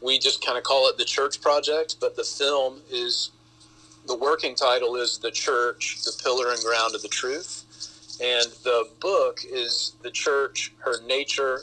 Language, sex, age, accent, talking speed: English, male, 40-59, American, 175 wpm